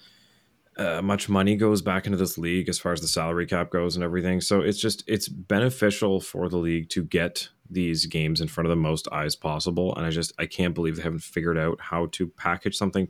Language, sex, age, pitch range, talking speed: English, male, 30-49, 80-95 Hz, 230 wpm